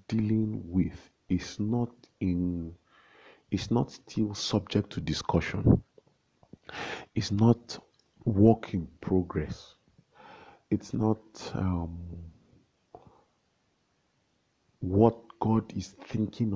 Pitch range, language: 85-110 Hz, English